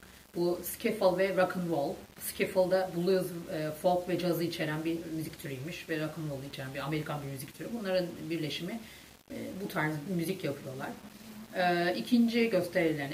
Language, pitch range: Turkish, 150-175 Hz